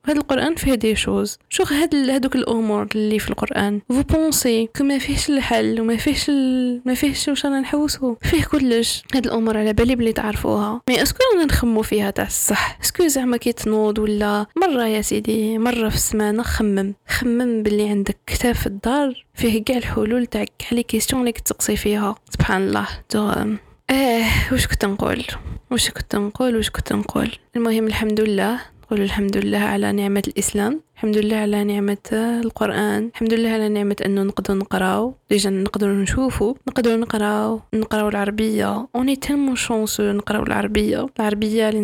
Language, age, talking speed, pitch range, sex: Arabic, 10-29, 160 wpm, 210-245 Hz, female